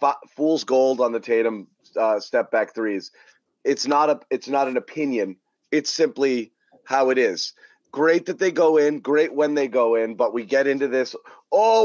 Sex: male